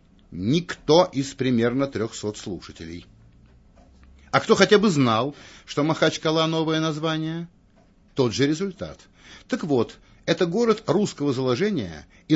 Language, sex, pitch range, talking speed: Russian, male, 120-180 Hz, 120 wpm